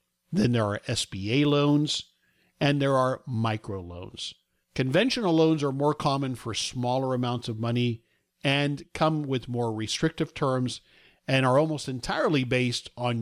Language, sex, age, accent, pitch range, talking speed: English, male, 50-69, American, 115-145 Hz, 145 wpm